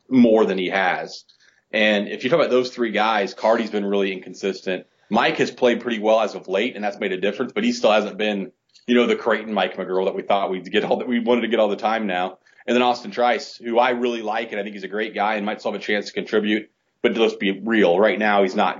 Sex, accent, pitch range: male, American, 100-125 Hz